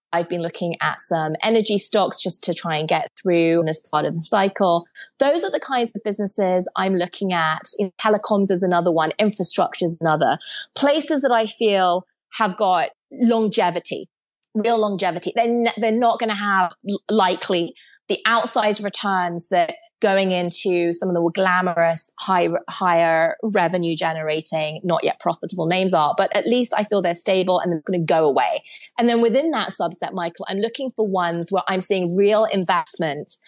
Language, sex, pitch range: English, female, 175-220 Hz